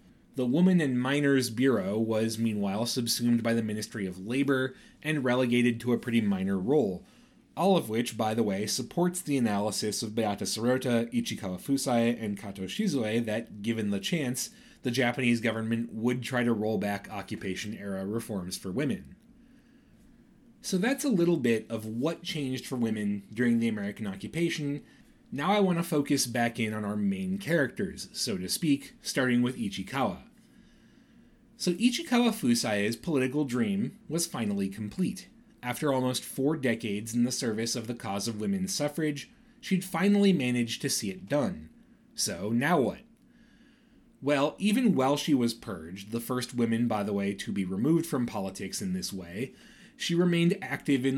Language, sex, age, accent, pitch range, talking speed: English, male, 30-49, American, 115-175 Hz, 165 wpm